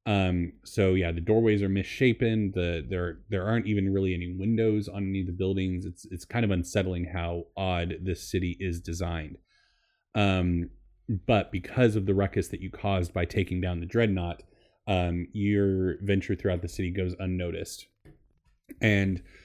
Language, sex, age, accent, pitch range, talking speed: English, male, 30-49, American, 90-100 Hz, 165 wpm